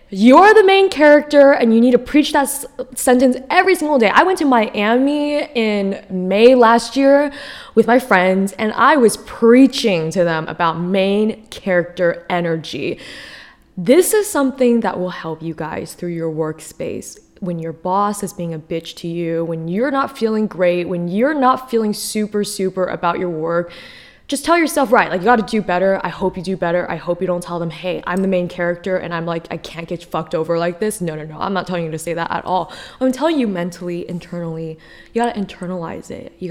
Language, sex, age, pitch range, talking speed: English, female, 20-39, 175-235 Hz, 205 wpm